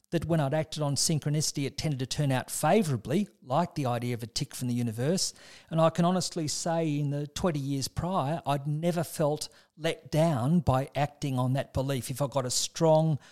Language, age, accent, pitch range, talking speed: English, 50-69, Australian, 135-165 Hz, 205 wpm